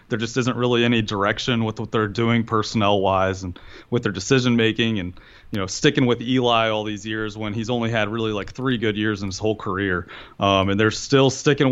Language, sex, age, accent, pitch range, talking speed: English, male, 30-49, American, 105-120 Hz, 220 wpm